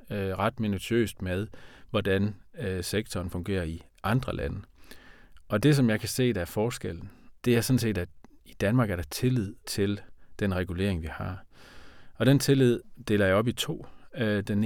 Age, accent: 30-49, native